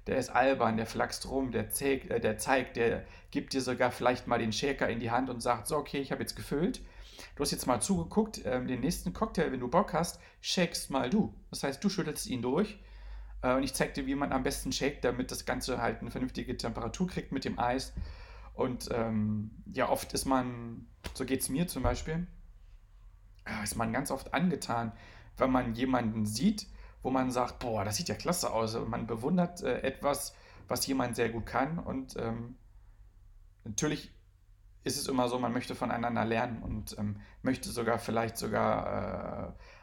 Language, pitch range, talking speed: German, 105-130 Hz, 190 wpm